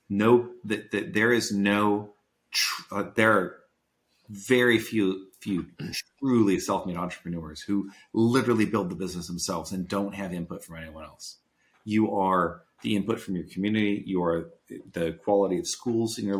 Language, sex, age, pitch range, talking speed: English, male, 40-59, 90-115 Hz, 155 wpm